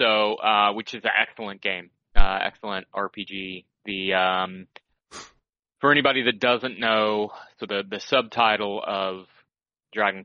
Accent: American